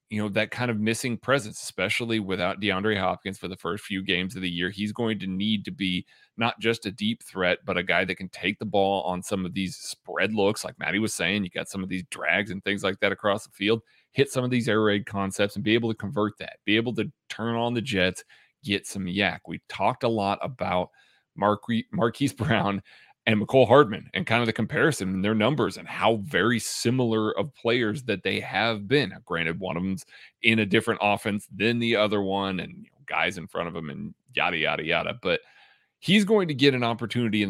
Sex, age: male, 30-49